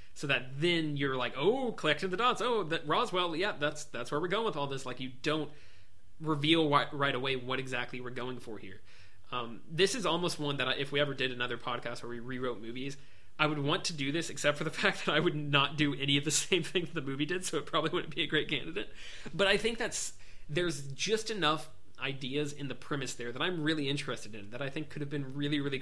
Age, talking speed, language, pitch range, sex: 20-39, 250 wpm, English, 120-150 Hz, male